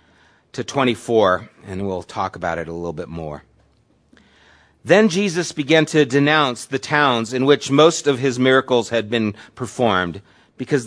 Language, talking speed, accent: English, 155 wpm, American